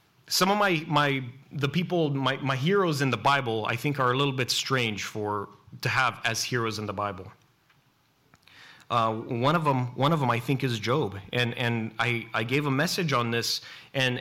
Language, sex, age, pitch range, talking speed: English, male, 30-49, 135-195 Hz, 205 wpm